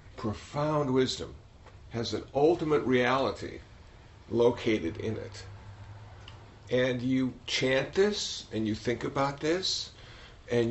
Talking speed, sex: 105 wpm, male